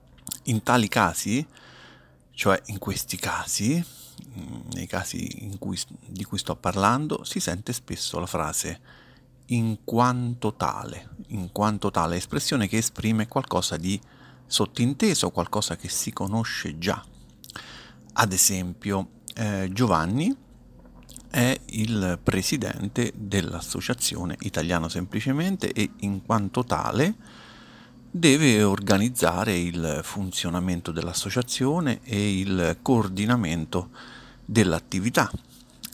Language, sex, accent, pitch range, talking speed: Italian, male, native, 90-125 Hz, 95 wpm